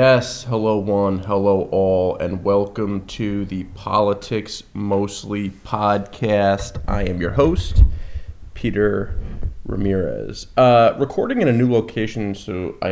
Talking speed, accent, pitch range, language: 120 wpm, American, 100-125 Hz, English